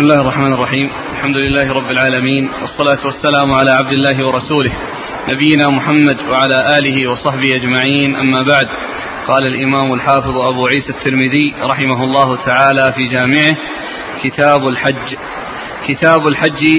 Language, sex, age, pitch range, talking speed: Arabic, male, 30-49, 140-170 Hz, 130 wpm